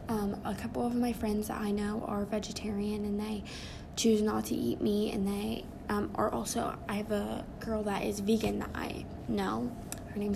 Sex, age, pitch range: female, 10-29, 205-225 Hz